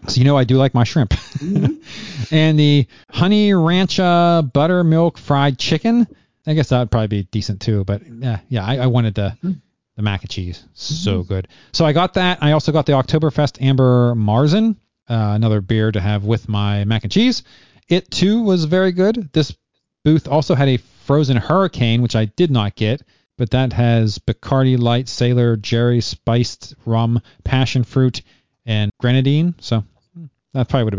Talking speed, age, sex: 175 wpm, 40-59, male